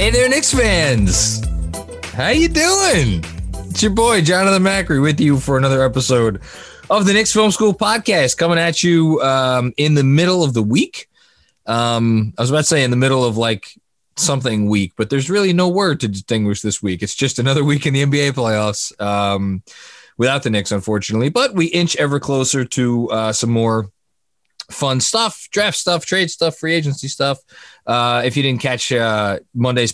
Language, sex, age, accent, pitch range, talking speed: English, male, 20-39, American, 105-150 Hz, 185 wpm